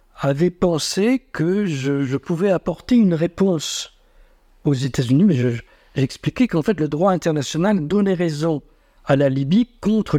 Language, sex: French, male